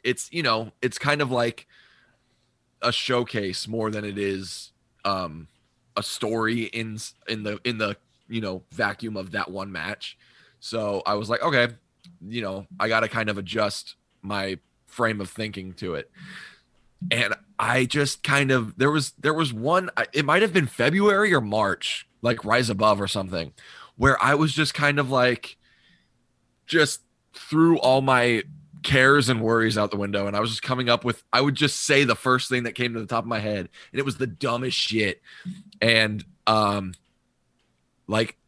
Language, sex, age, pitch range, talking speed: English, male, 20-39, 105-140 Hz, 180 wpm